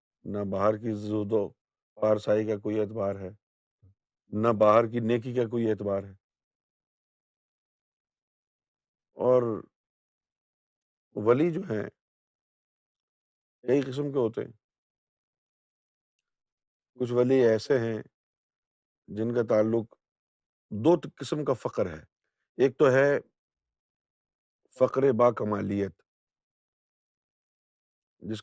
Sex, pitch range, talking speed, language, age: male, 105-140 Hz, 90 wpm, Urdu, 50-69